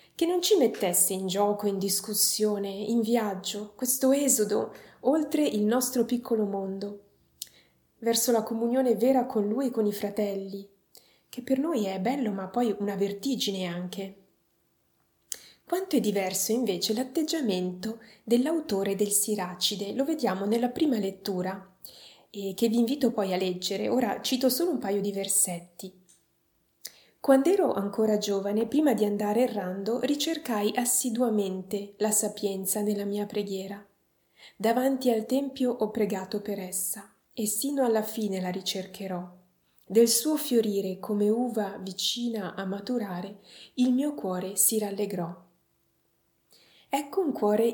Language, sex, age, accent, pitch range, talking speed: Italian, female, 20-39, native, 195-245 Hz, 135 wpm